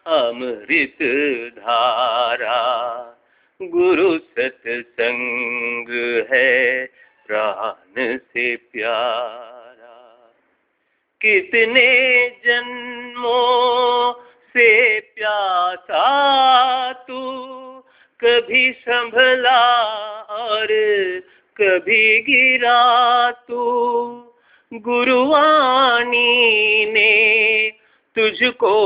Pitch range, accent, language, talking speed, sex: 195-260 Hz, Indian, English, 50 wpm, male